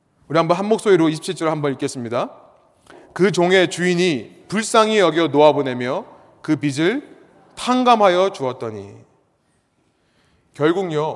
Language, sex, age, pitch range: Korean, male, 30-49, 165-230 Hz